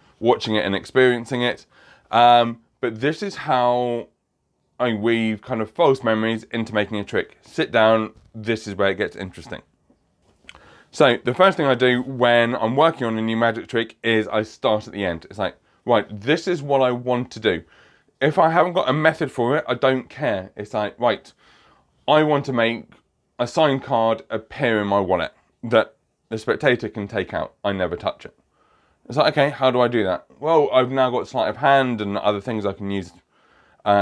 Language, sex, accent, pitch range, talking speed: English, male, British, 105-130 Hz, 205 wpm